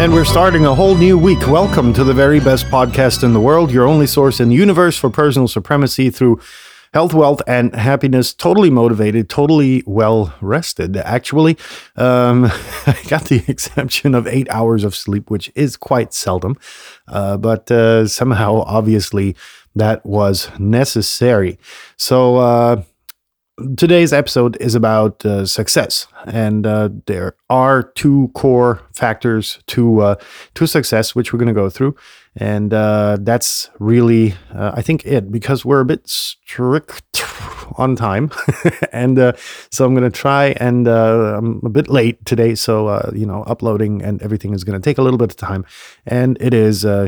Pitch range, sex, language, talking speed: 110-140 Hz, male, English, 170 wpm